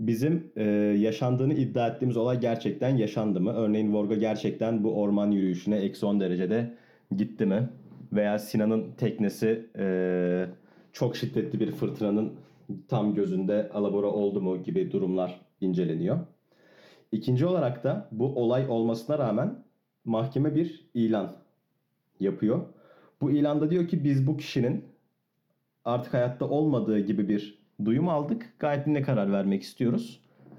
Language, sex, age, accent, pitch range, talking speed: Turkish, male, 40-59, native, 105-140 Hz, 130 wpm